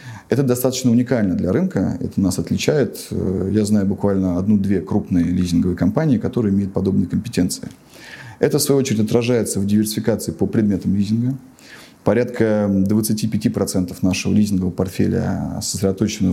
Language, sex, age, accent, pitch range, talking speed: Russian, male, 20-39, native, 95-115 Hz, 130 wpm